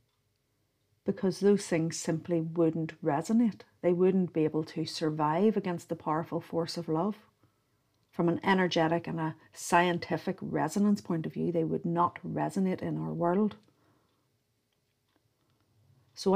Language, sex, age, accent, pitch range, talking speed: English, female, 50-69, Irish, 130-180 Hz, 130 wpm